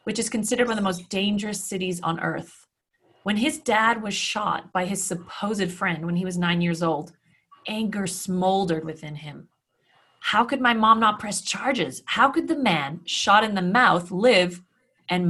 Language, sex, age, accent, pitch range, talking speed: English, female, 30-49, American, 170-210 Hz, 185 wpm